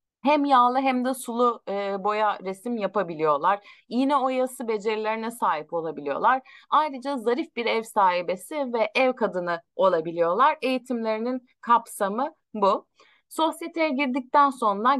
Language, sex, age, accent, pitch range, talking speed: Turkish, female, 30-49, native, 195-270 Hz, 110 wpm